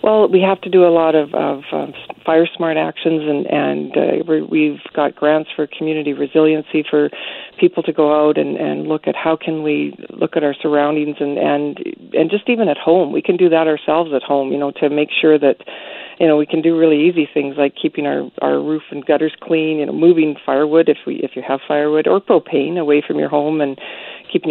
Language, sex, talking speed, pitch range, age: English, female, 225 wpm, 150-165 Hz, 50-69